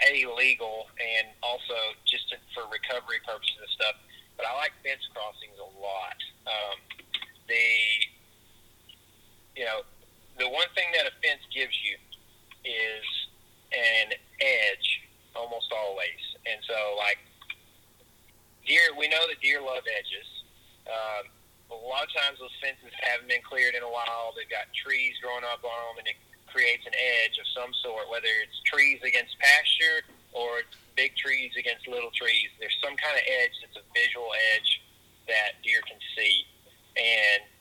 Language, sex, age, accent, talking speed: English, male, 30-49, American, 155 wpm